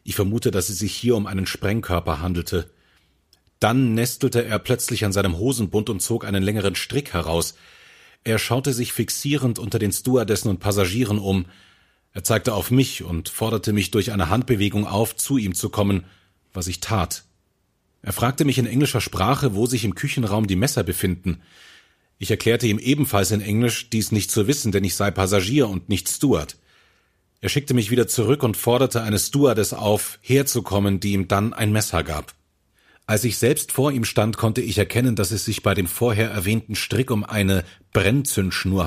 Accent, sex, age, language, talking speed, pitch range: German, male, 30-49, German, 180 wpm, 95-120 Hz